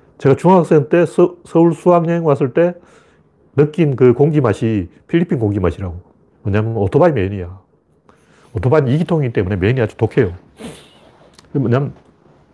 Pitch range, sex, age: 105-150 Hz, male, 40-59